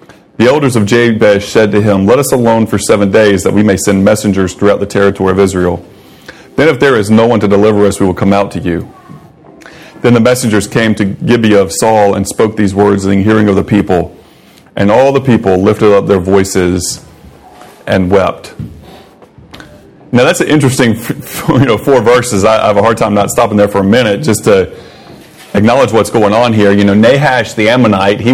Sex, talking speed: male, 205 wpm